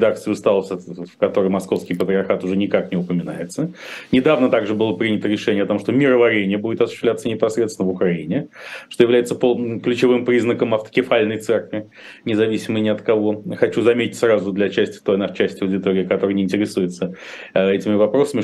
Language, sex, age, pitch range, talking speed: Russian, male, 30-49, 95-120 Hz, 155 wpm